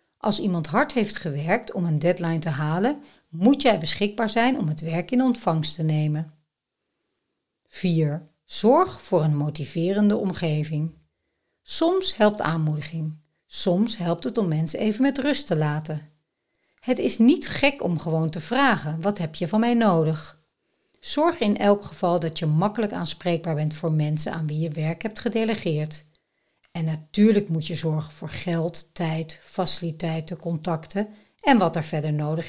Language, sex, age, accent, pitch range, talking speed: Dutch, female, 60-79, Dutch, 155-215 Hz, 160 wpm